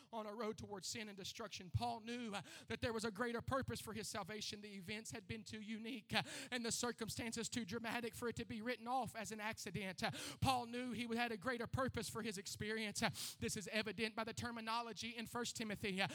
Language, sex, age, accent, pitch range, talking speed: English, male, 30-49, American, 205-240 Hz, 210 wpm